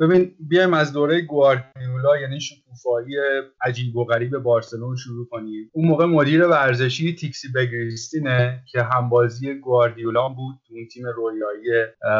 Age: 30-49